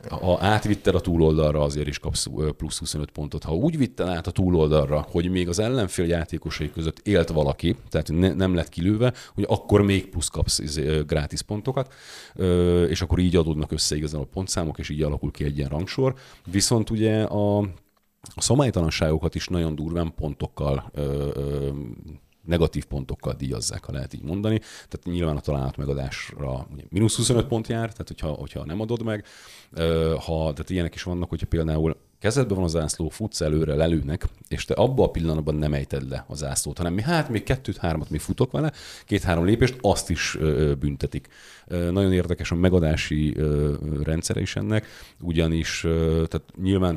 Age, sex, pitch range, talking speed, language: 40-59, male, 75-95 Hz, 165 wpm, Hungarian